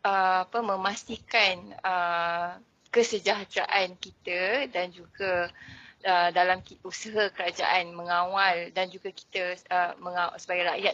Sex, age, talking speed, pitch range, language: female, 20-39, 100 wpm, 180-205 Hz, English